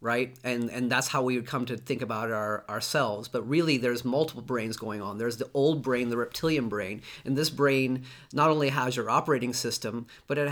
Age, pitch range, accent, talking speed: 30-49, 120-145 Hz, American, 215 wpm